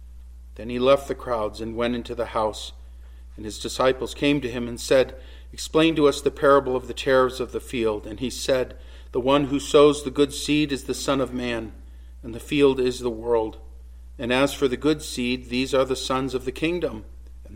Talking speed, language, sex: 220 wpm, English, male